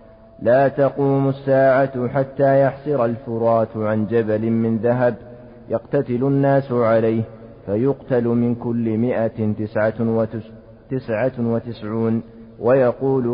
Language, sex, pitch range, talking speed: Arabic, male, 115-135 Hz, 90 wpm